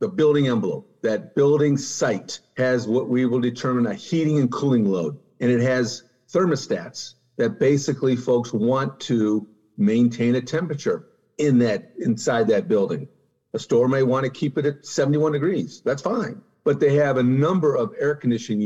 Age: 50-69